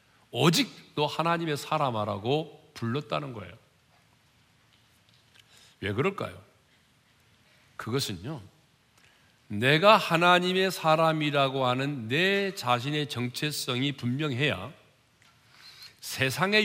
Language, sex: Korean, male